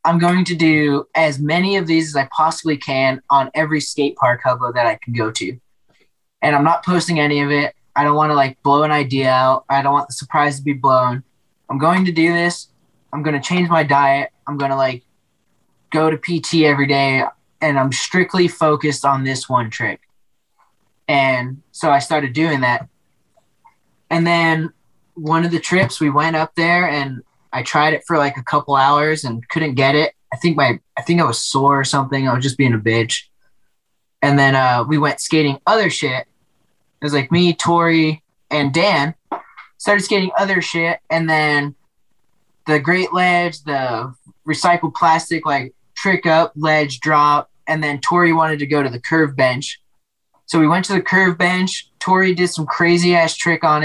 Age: 20-39